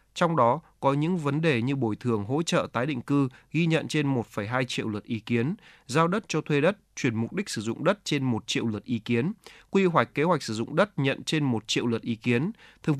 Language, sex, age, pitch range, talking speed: Vietnamese, male, 20-39, 120-155 Hz, 250 wpm